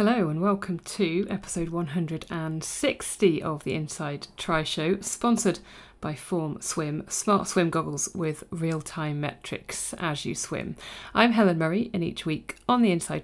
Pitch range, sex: 160-195 Hz, female